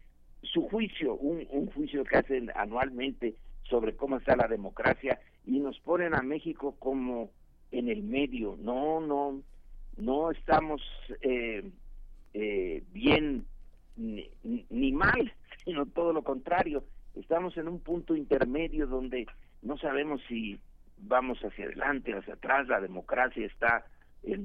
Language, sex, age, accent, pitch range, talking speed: Spanish, male, 50-69, Mexican, 95-155 Hz, 135 wpm